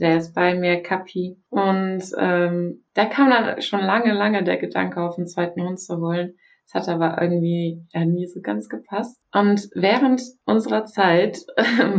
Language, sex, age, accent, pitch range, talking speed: German, female, 20-39, German, 170-215 Hz, 175 wpm